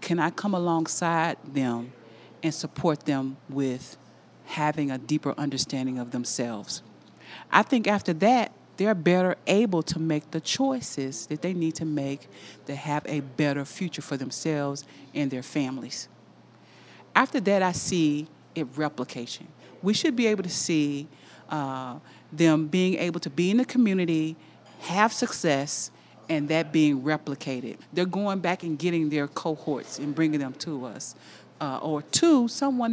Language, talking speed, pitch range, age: English, 155 wpm, 140-180 Hz, 40-59